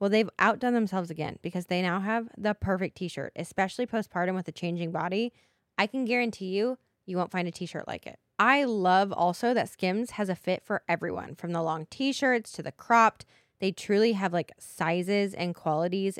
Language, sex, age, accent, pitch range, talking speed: English, female, 10-29, American, 175-230 Hz, 195 wpm